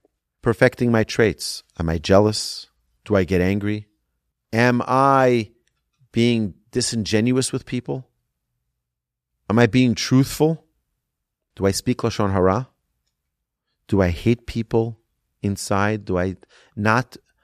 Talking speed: 115 wpm